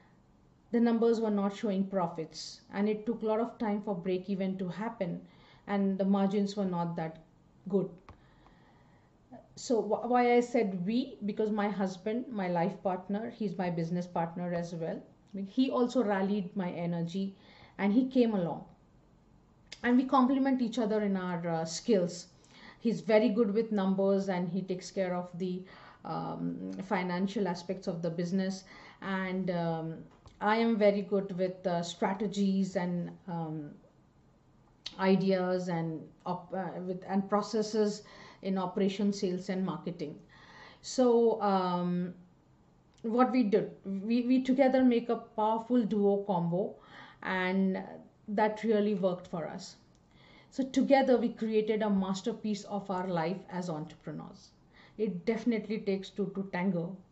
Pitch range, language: 180-220 Hz, English